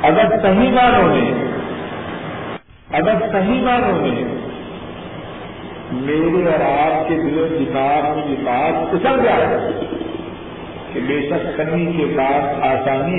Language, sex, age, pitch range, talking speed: Urdu, female, 50-69, 145-175 Hz, 115 wpm